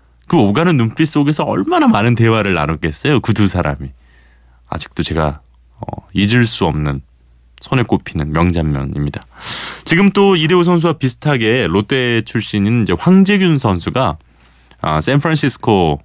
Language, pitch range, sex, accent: Korean, 75-125 Hz, male, native